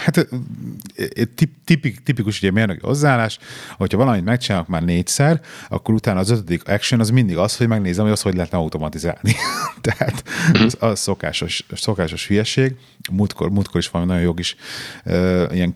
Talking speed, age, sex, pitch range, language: 155 wpm, 30-49, male, 90-125 Hz, Hungarian